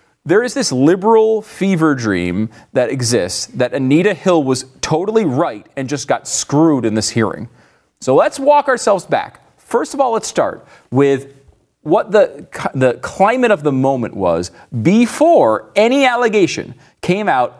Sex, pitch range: male, 125-200 Hz